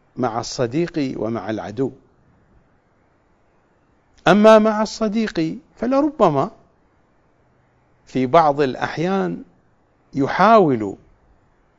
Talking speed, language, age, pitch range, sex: 60 wpm, English, 50-69, 125-175 Hz, male